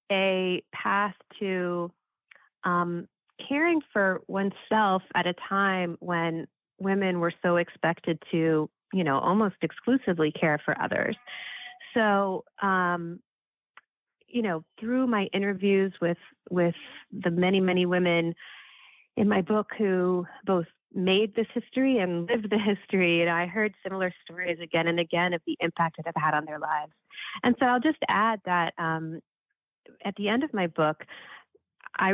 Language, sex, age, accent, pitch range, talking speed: English, female, 30-49, American, 165-205 Hz, 150 wpm